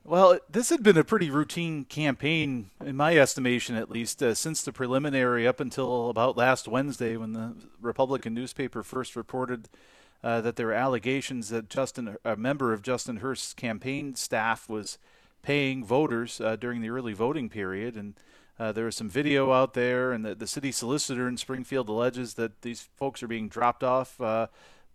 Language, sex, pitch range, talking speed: English, male, 115-140 Hz, 180 wpm